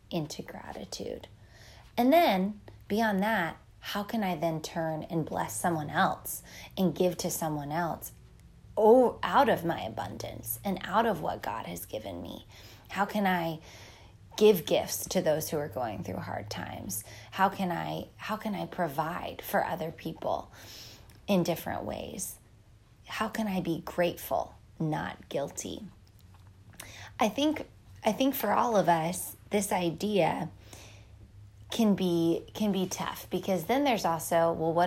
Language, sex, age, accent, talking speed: English, female, 20-39, American, 150 wpm